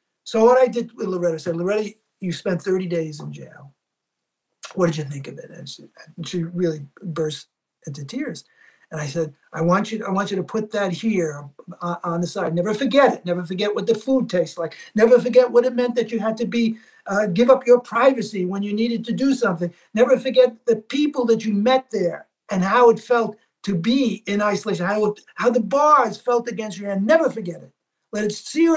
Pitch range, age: 175-240 Hz, 50-69